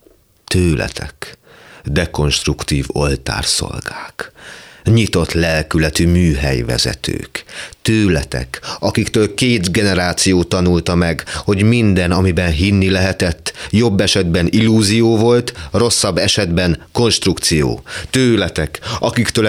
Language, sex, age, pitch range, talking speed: Hungarian, male, 30-49, 75-105 Hz, 80 wpm